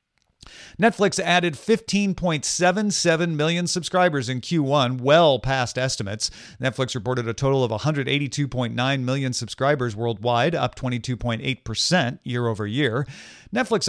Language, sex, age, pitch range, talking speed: English, male, 40-59, 115-155 Hz, 110 wpm